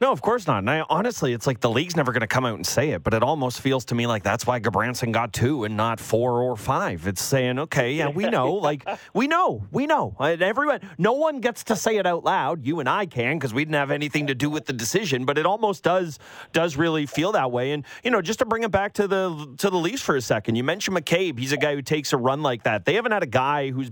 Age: 30-49